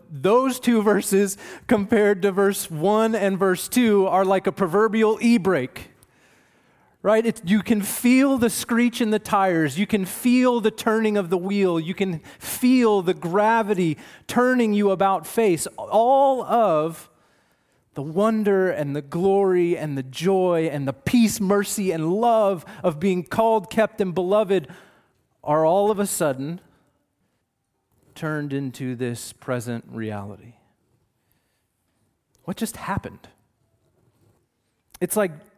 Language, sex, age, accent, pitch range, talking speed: English, male, 30-49, American, 150-205 Hz, 130 wpm